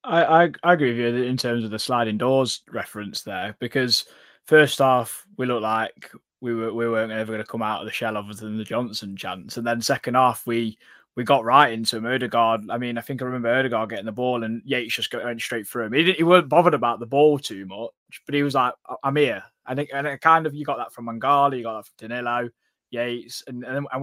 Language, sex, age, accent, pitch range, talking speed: English, male, 20-39, British, 115-135 Hz, 250 wpm